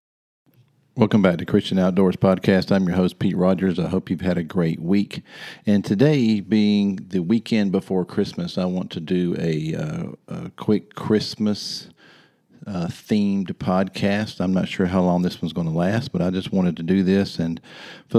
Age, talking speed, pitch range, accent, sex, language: 50-69, 180 wpm, 90-105 Hz, American, male, English